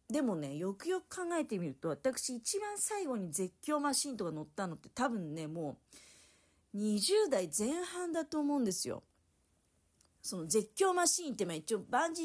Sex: female